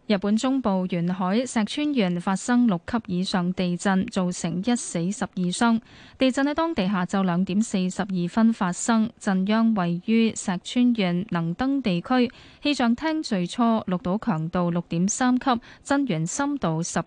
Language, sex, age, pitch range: Chinese, female, 10-29, 180-235 Hz